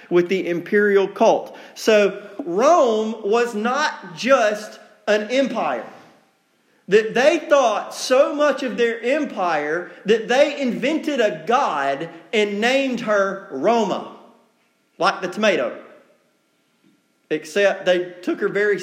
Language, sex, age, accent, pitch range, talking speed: English, male, 40-59, American, 200-245 Hz, 115 wpm